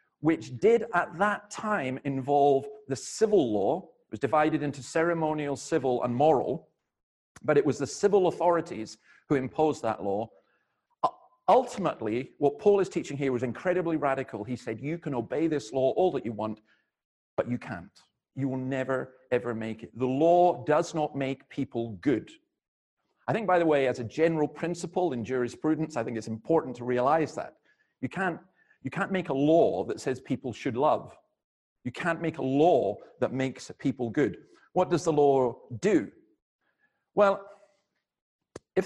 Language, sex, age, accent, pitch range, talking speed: English, male, 40-59, British, 125-175 Hz, 170 wpm